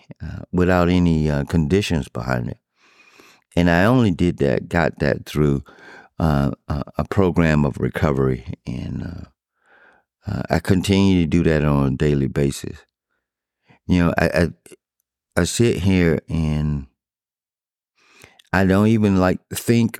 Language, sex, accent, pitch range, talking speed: English, male, American, 75-95 Hz, 140 wpm